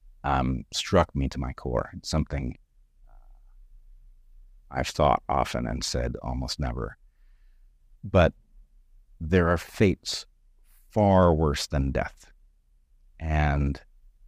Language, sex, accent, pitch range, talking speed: English, male, American, 65-85 Hz, 105 wpm